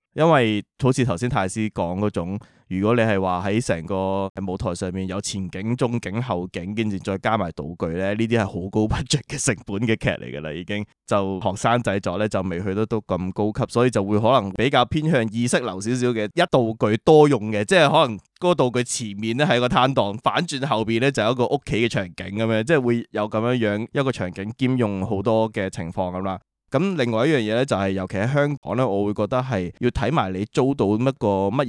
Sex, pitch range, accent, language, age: male, 95-125 Hz, native, Chinese, 20-39